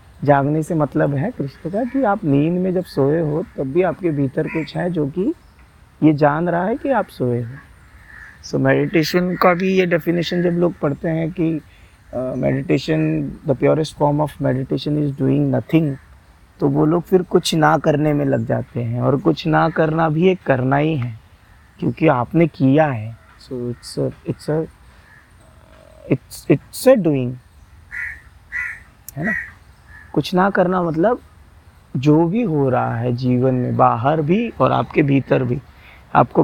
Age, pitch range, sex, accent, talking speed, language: 30-49, 125-165 Hz, male, native, 160 wpm, Hindi